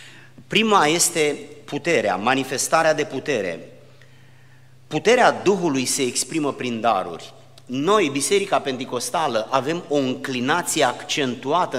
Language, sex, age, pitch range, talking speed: Romanian, male, 30-49, 125-145 Hz, 95 wpm